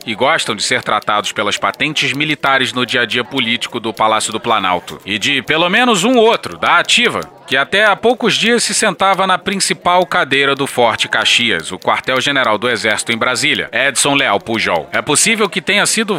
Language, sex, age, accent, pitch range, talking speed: Portuguese, male, 30-49, Brazilian, 125-185 Hz, 195 wpm